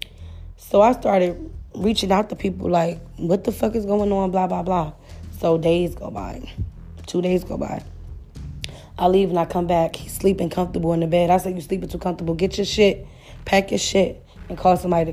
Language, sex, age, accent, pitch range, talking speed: English, female, 20-39, American, 120-185 Hz, 200 wpm